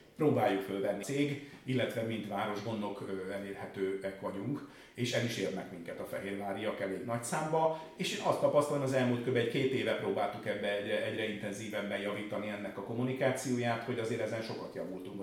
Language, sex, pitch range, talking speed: Hungarian, male, 105-140 Hz, 165 wpm